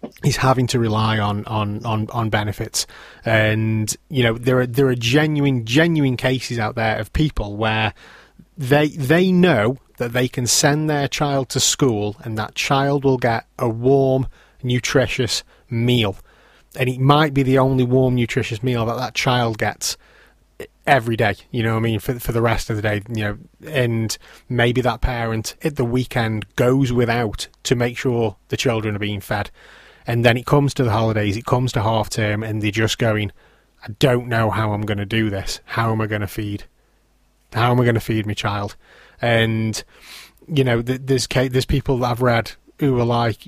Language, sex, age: English, male, 30-49